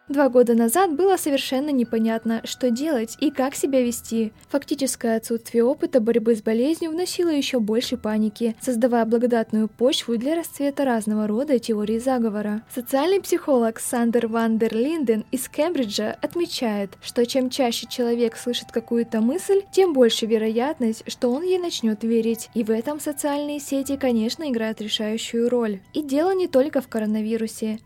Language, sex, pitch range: Russian, female, 225-270 Hz